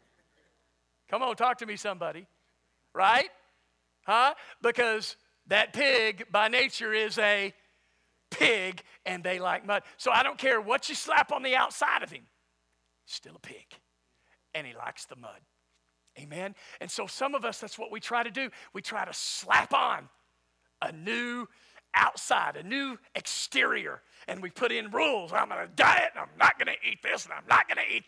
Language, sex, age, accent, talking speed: English, male, 50-69, American, 180 wpm